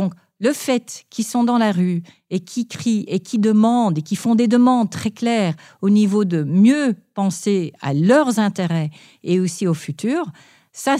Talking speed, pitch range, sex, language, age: 185 wpm, 185-245 Hz, female, French, 50-69